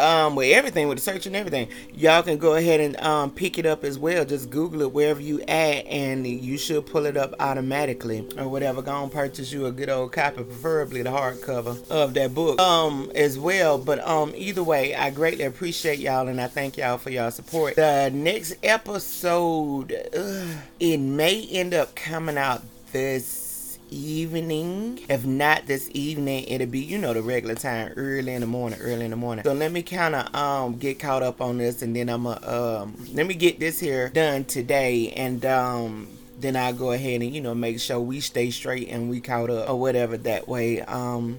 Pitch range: 125-155 Hz